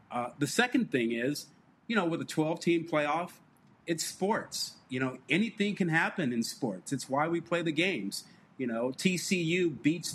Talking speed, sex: 175 wpm, male